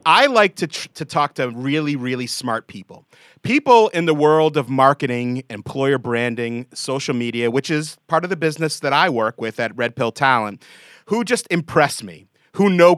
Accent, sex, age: American, male, 30-49